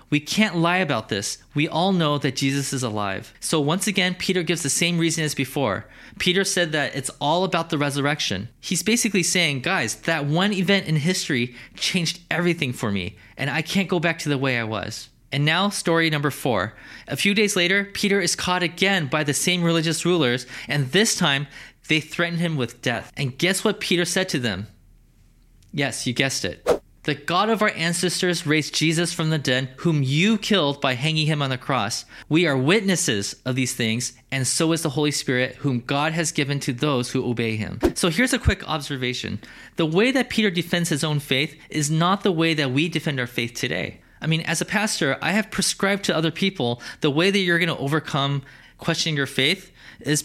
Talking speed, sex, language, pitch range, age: 210 wpm, male, English, 135-175 Hz, 20-39